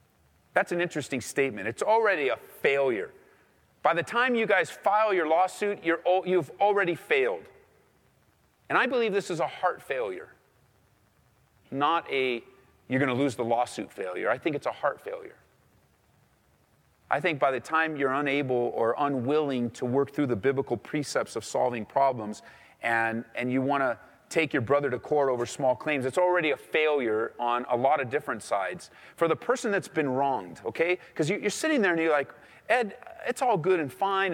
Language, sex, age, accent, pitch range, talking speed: English, male, 40-59, American, 130-210 Hz, 180 wpm